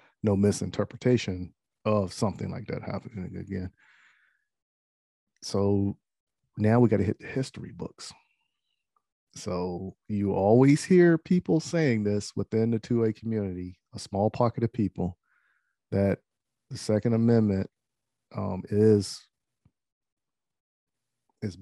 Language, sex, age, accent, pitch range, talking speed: English, male, 40-59, American, 95-115 Hz, 110 wpm